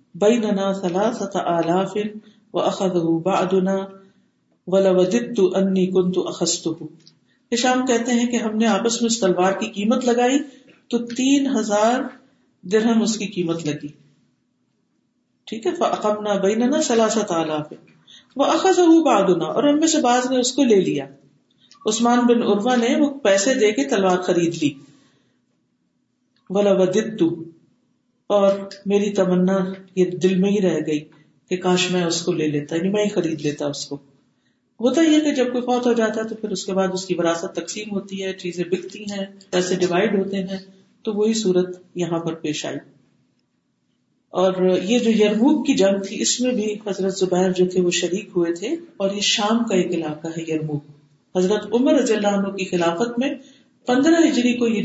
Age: 50-69